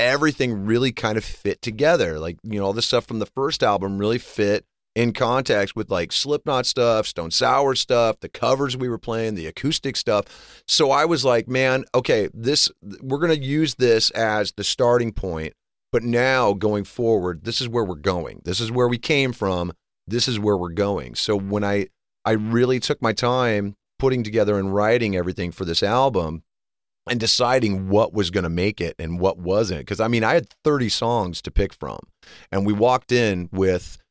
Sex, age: male, 30-49